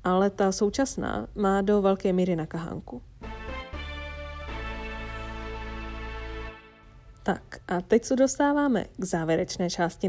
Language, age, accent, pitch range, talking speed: Czech, 20-39, native, 175-210 Hz, 95 wpm